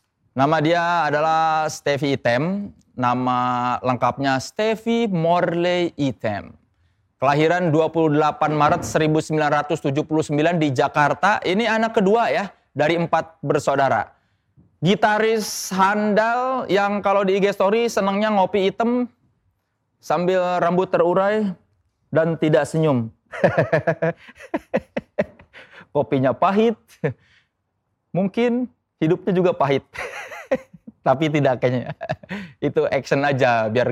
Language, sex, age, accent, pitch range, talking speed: Indonesian, male, 20-39, native, 145-205 Hz, 90 wpm